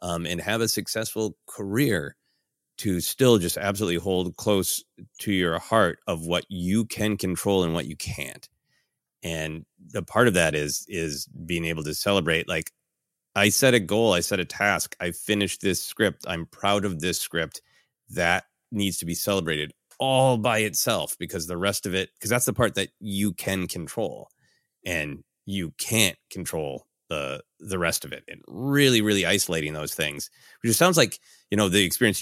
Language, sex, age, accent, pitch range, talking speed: English, male, 30-49, American, 85-105 Hz, 180 wpm